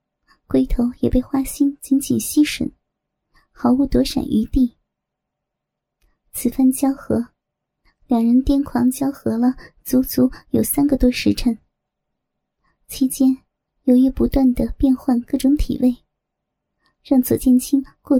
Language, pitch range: Chinese, 245-275 Hz